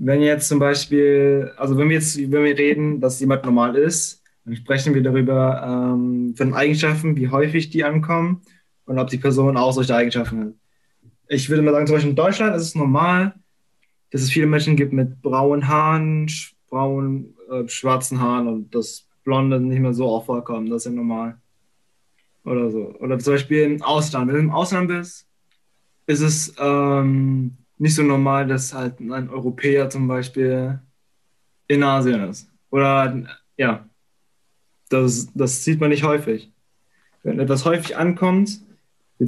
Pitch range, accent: 125-150 Hz, German